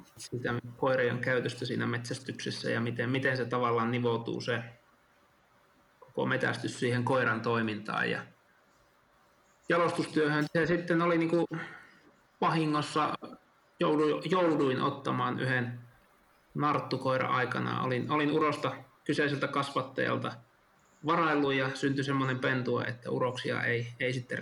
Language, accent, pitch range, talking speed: Finnish, native, 120-150 Hz, 115 wpm